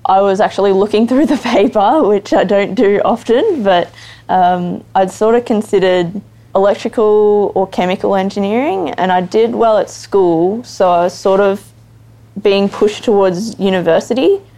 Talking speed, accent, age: 150 wpm, Australian, 20-39